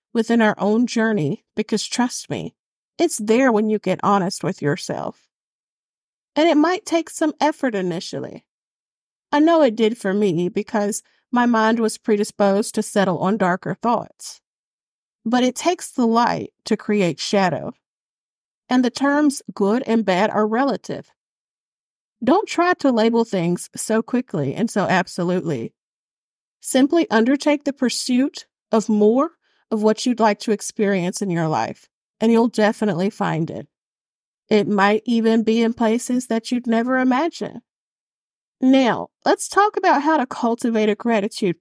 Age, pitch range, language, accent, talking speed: 50-69, 205-260 Hz, English, American, 150 wpm